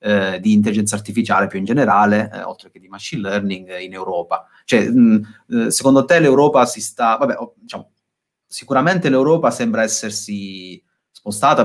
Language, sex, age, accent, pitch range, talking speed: Italian, male, 30-49, native, 95-130 Hz, 155 wpm